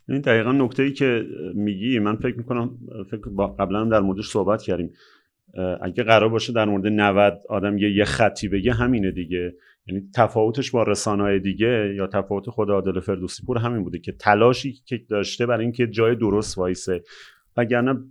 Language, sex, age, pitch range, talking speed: Persian, male, 30-49, 100-120 Hz, 160 wpm